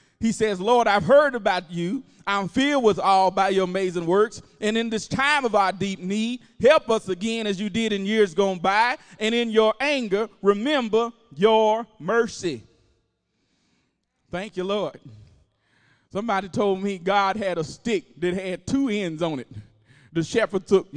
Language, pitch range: English, 185-240 Hz